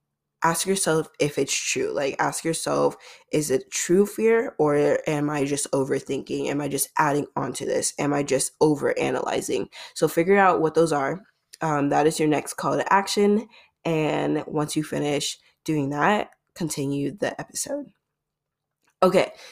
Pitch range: 145-175 Hz